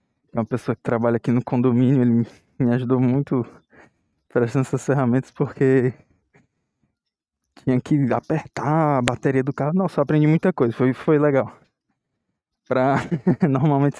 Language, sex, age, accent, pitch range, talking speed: Portuguese, male, 20-39, Brazilian, 125-150 Hz, 135 wpm